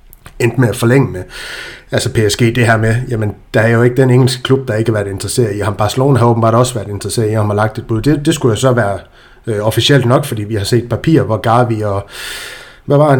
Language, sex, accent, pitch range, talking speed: Danish, male, native, 110-130 Hz, 260 wpm